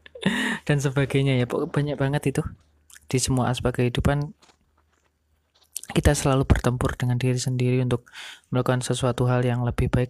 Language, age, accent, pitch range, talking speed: Indonesian, 30-49, native, 125-145 Hz, 135 wpm